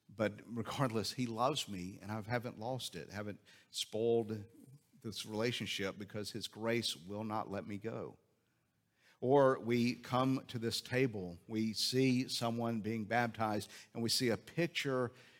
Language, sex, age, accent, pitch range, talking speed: English, male, 50-69, American, 105-125 Hz, 150 wpm